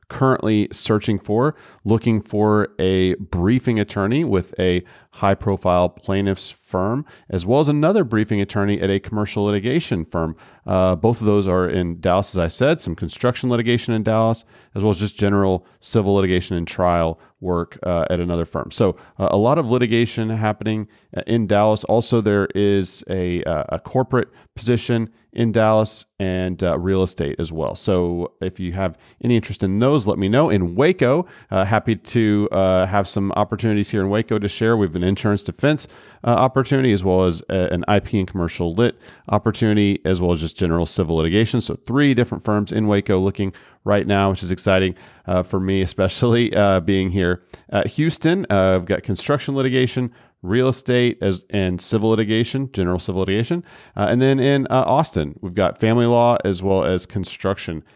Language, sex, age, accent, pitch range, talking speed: English, male, 40-59, American, 95-115 Hz, 180 wpm